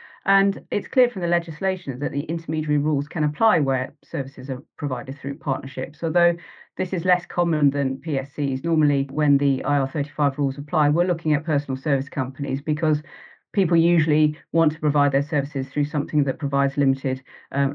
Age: 40-59